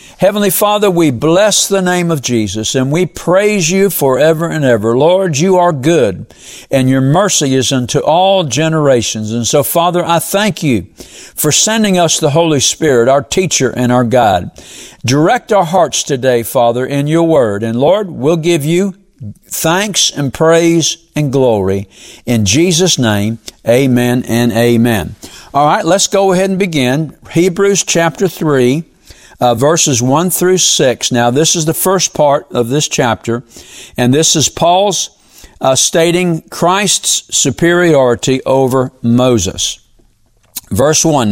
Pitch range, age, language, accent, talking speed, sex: 125-175 Hz, 60-79, English, American, 150 wpm, male